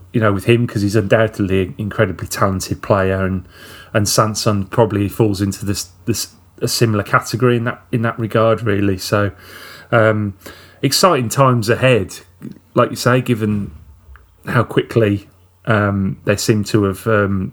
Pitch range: 100-125 Hz